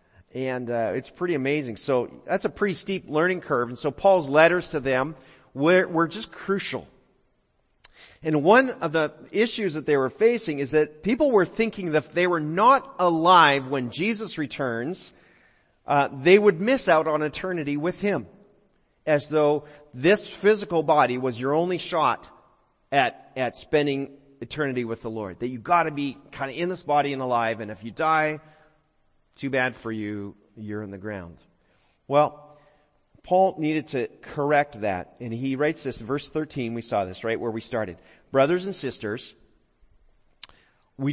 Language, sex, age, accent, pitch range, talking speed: English, male, 40-59, American, 120-165 Hz, 170 wpm